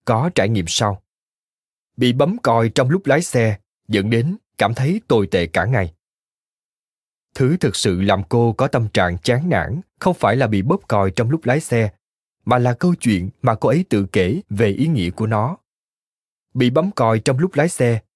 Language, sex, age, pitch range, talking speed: Vietnamese, male, 20-39, 105-145 Hz, 200 wpm